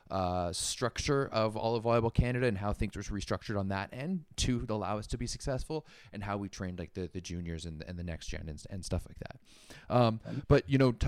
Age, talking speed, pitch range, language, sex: 20-39, 235 wpm, 90-110 Hz, English, male